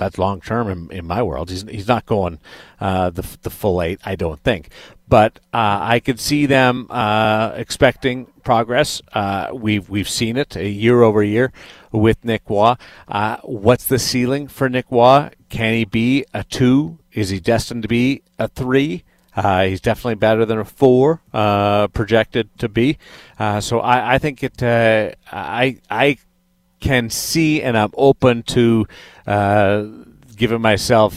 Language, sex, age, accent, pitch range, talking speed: English, male, 40-59, American, 100-125 Hz, 170 wpm